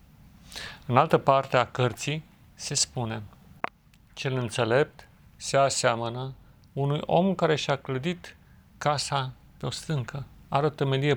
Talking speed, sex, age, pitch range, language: 125 wpm, male, 40-59, 125-150 Hz, Romanian